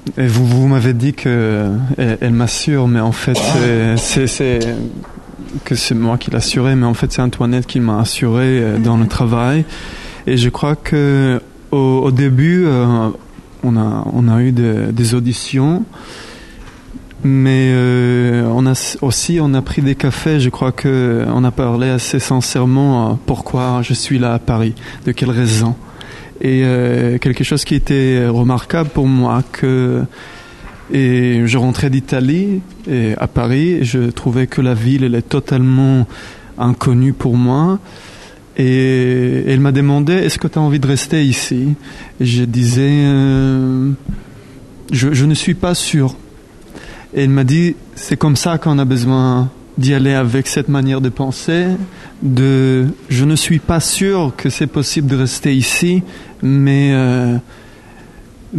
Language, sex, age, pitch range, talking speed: English, male, 20-39, 125-140 Hz, 165 wpm